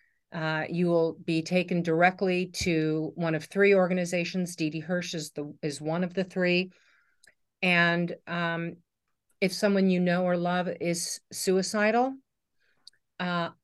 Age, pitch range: 50-69, 170-200 Hz